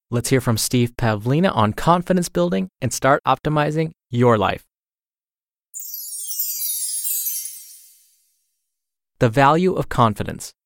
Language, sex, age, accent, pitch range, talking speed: English, male, 20-39, American, 115-160 Hz, 95 wpm